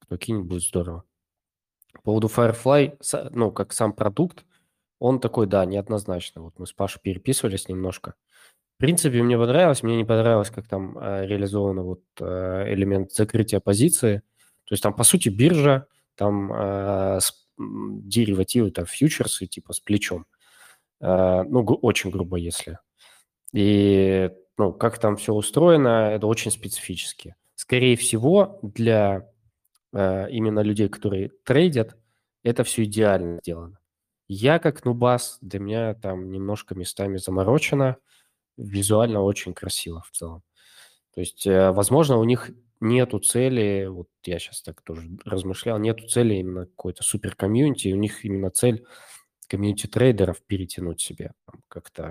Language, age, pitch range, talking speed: Russian, 20-39, 95-115 Hz, 140 wpm